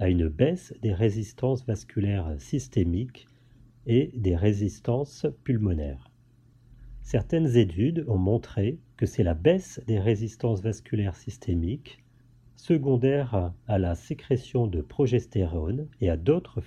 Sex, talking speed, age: male, 115 wpm, 40-59